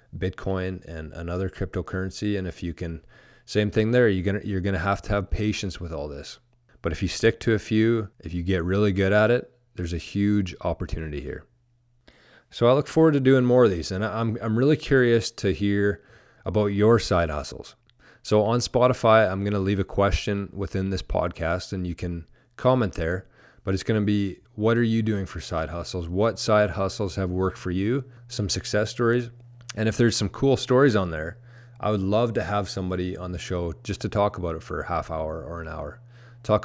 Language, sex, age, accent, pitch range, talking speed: English, male, 30-49, American, 95-115 Hz, 215 wpm